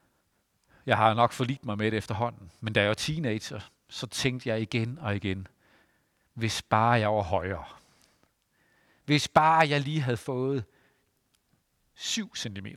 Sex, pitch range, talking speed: male, 115-155 Hz, 150 wpm